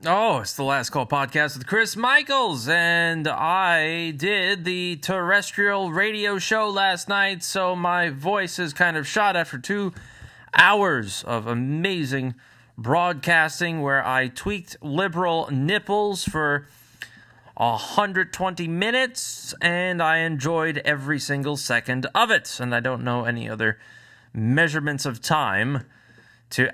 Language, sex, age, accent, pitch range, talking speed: English, male, 20-39, American, 135-200 Hz, 130 wpm